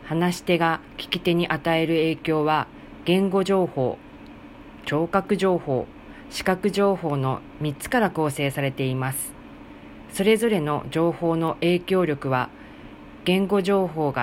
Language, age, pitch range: Japanese, 40-59, 145-190 Hz